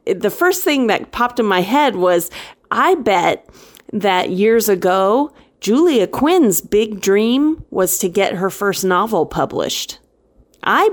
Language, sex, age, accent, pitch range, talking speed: English, female, 30-49, American, 185-255 Hz, 145 wpm